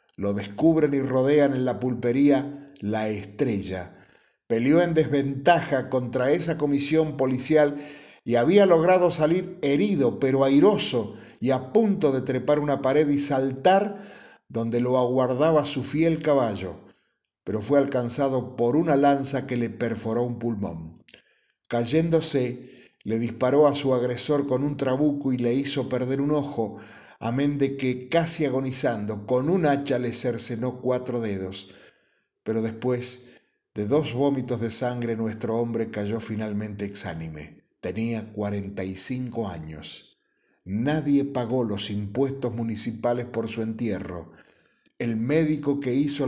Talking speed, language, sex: 135 wpm, Spanish, male